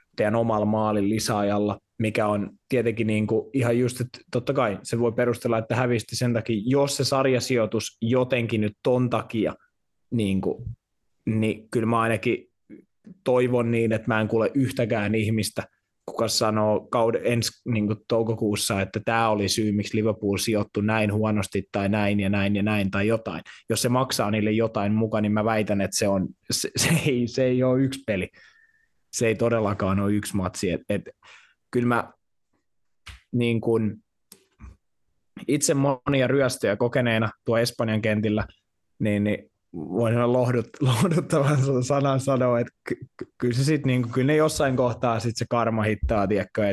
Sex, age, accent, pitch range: male, 20-39, native, 105-120 Hz